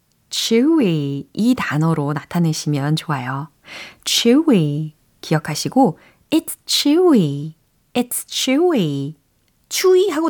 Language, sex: Korean, female